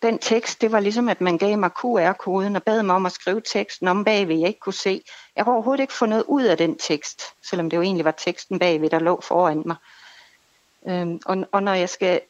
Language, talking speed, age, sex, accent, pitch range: Danish, 240 wpm, 60-79, female, native, 180-230 Hz